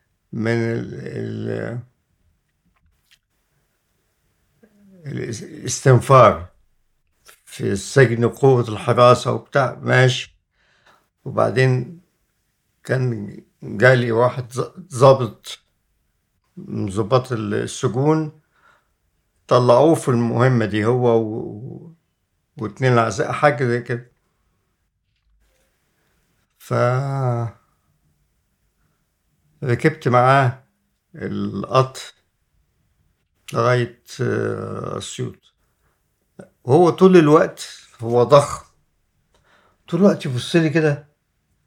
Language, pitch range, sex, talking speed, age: Arabic, 115-150 Hz, male, 60 wpm, 60-79